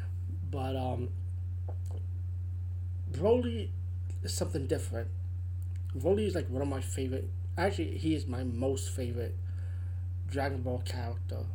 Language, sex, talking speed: English, male, 115 wpm